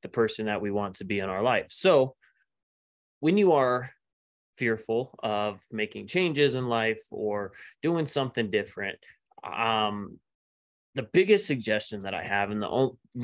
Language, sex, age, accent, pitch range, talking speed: English, male, 20-39, American, 105-120 Hz, 155 wpm